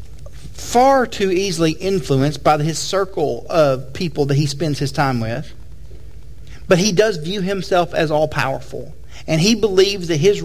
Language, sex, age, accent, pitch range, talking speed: English, male, 40-59, American, 175-235 Hz, 160 wpm